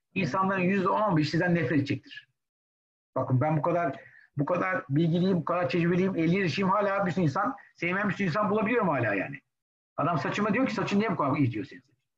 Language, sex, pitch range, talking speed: Turkish, male, 130-170 Hz, 195 wpm